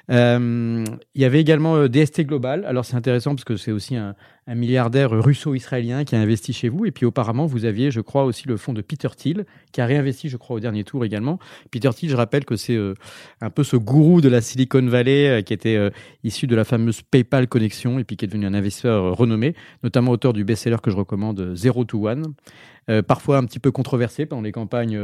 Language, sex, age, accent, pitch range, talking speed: French, male, 30-49, French, 110-140 Hz, 240 wpm